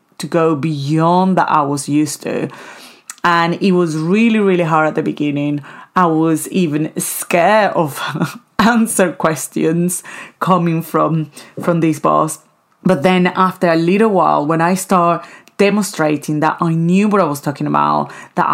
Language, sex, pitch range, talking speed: English, female, 155-180 Hz, 155 wpm